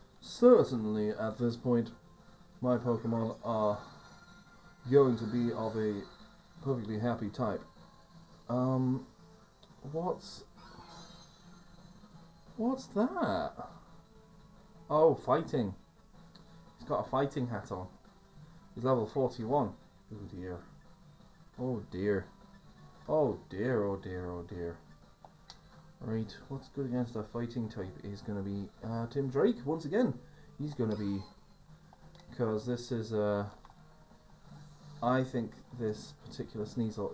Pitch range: 110-160 Hz